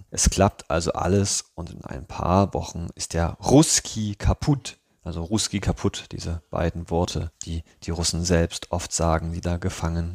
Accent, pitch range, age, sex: German, 85-100 Hz, 30-49, male